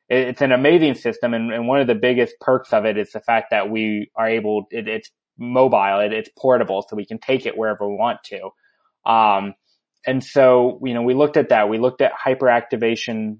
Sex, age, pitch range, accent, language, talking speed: male, 20-39, 110-130 Hz, American, English, 205 wpm